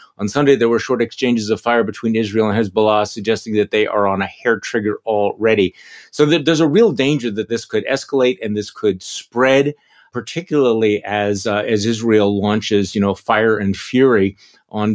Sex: male